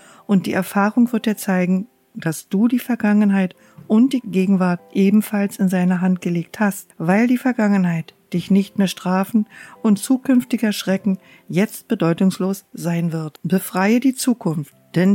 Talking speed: 145 wpm